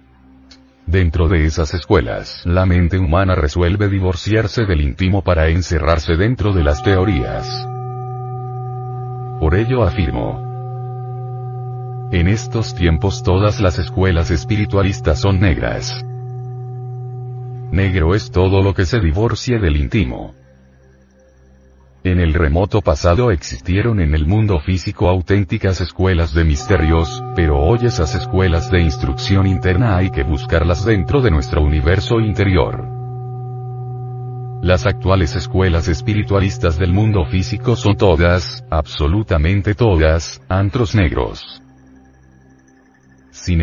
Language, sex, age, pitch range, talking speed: Spanish, male, 40-59, 85-115 Hz, 110 wpm